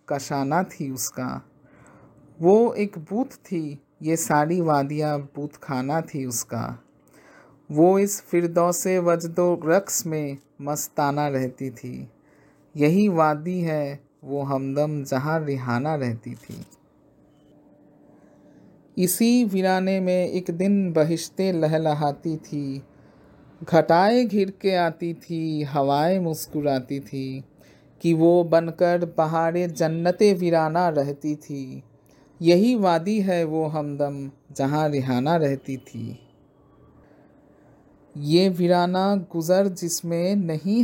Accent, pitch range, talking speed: Indian, 140-175 Hz, 100 wpm